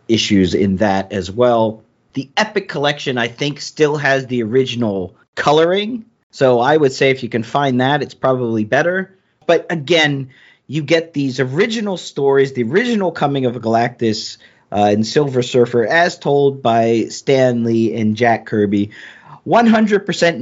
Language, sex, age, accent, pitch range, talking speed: English, male, 40-59, American, 120-160 Hz, 155 wpm